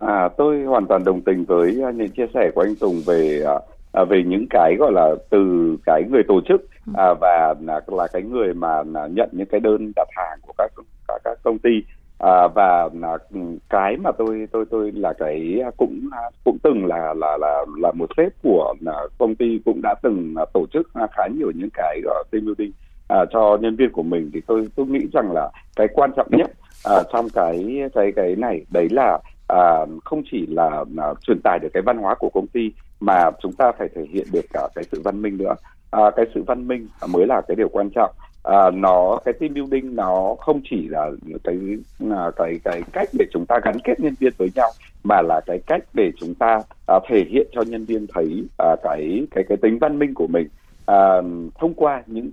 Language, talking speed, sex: Vietnamese, 215 wpm, male